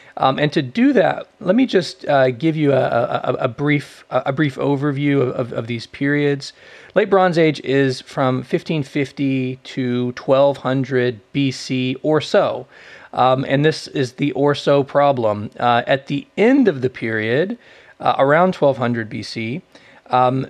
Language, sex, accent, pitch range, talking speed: English, male, American, 125-145 Hz, 165 wpm